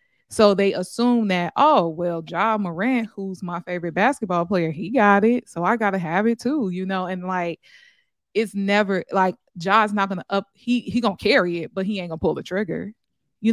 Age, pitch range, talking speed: 20-39, 180-205 Hz, 220 wpm